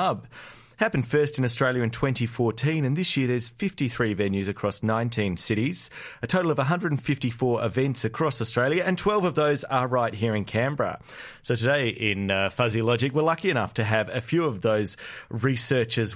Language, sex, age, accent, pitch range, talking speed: English, male, 30-49, Australian, 115-140 Hz, 180 wpm